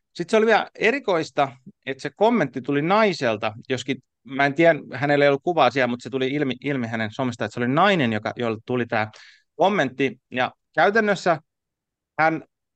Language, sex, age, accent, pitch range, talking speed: Finnish, male, 30-49, native, 125-165 Hz, 180 wpm